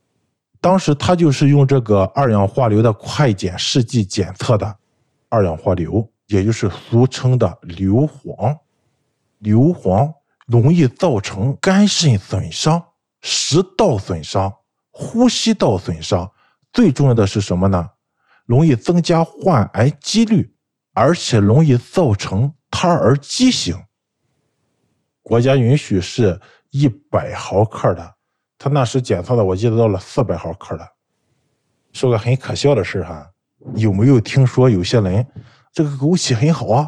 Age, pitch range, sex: 50-69, 105-145 Hz, male